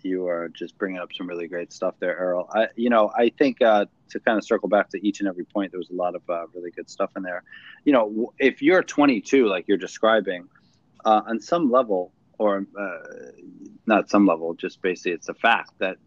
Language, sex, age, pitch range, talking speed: English, male, 30-49, 95-115 Hz, 225 wpm